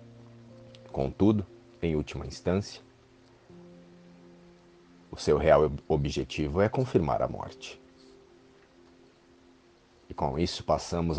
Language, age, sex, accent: Portuguese, 40-59, male, Brazilian